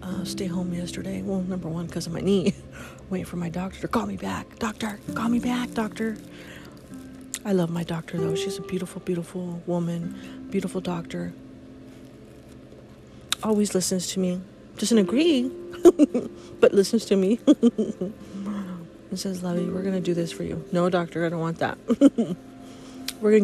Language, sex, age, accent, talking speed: English, female, 30-49, American, 165 wpm